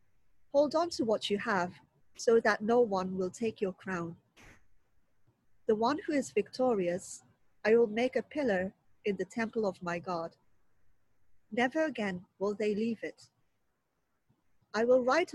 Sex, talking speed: female, 155 wpm